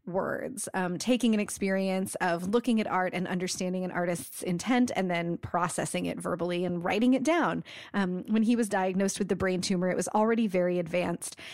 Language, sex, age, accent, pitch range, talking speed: English, female, 30-49, American, 185-210 Hz, 190 wpm